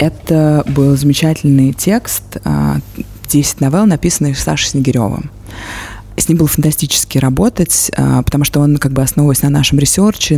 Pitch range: 130-160 Hz